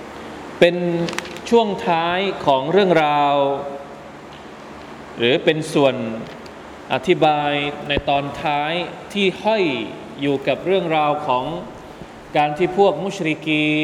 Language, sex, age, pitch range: Thai, male, 20-39, 145-190 Hz